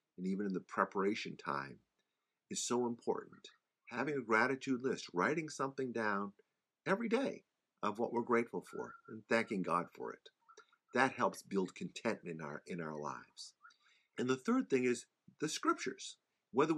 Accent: American